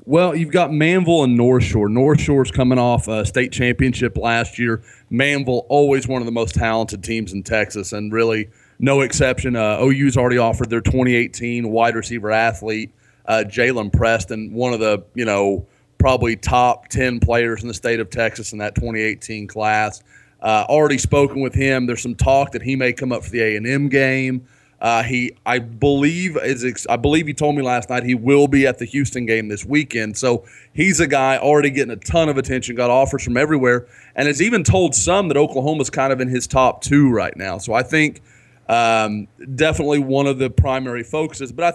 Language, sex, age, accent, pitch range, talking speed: English, male, 30-49, American, 115-135 Hz, 200 wpm